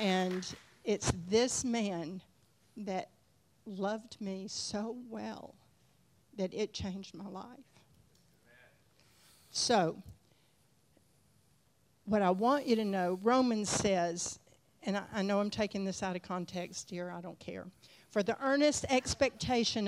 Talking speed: 120 wpm